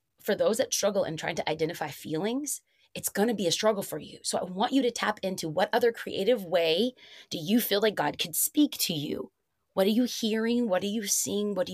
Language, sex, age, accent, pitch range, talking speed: English, female, 20-39, American, 195-270 Hz, 240 wpm